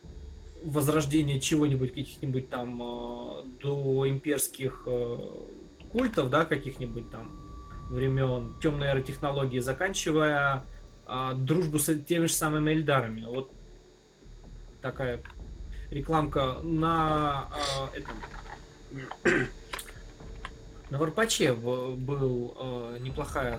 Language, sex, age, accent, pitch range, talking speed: Russian, male, 20-39, native, 120-145 Hz, 85 wpm